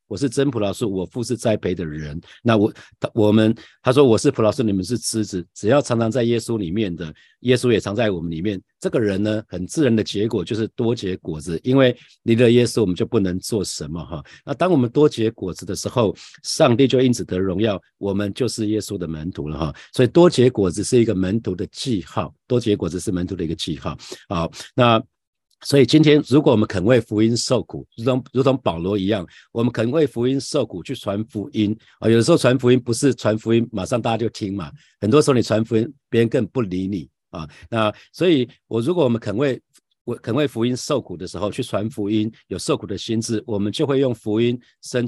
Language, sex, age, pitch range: Chinese, male, 50-69, 100-125 Hz